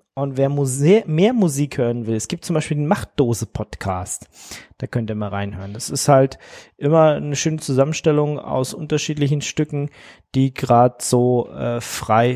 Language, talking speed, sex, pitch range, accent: German, 155 wpm, male, 110-145 Hz, German